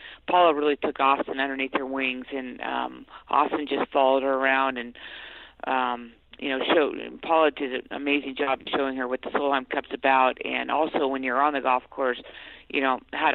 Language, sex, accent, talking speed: English, female, American, 190 wpm